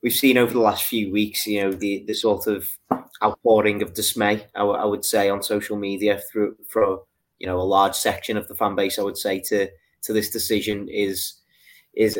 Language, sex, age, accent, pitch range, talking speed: English, male, 20-39, British, 100-115 Hz, 215 wpm